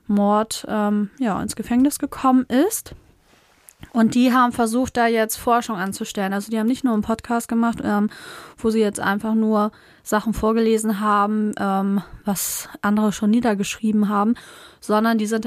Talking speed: 160 wpm